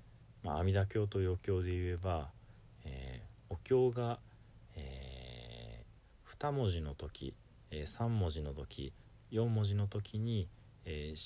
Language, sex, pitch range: Japanese, male, 75-110 Hz